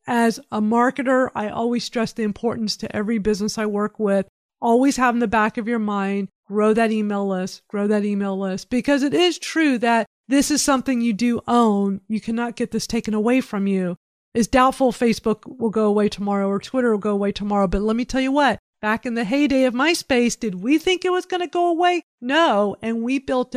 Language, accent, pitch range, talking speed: English, American, 205-250 Hz, 220 wpm